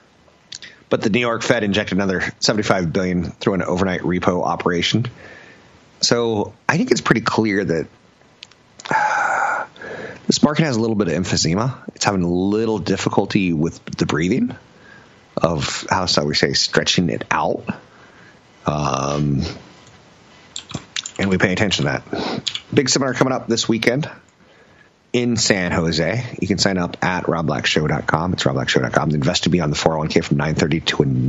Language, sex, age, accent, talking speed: English, male, 30-49, American, 150 wpm